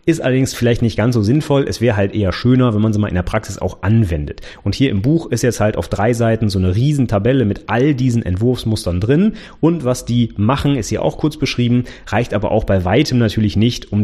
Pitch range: 100-130 Hz